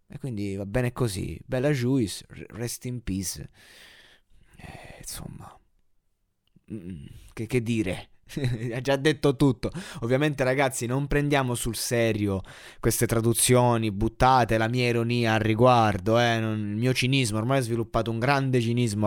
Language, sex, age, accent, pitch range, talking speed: Italian, male, 20-39, native, 105-130 Hz, 135 wpm